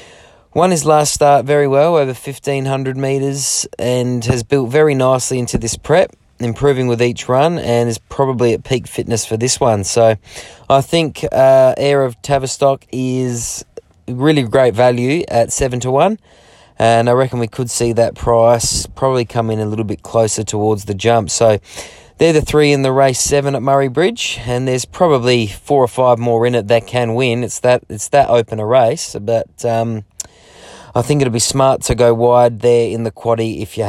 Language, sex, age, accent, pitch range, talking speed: English, male, 20-39, Australian, 115-140 Hz, 190 wpm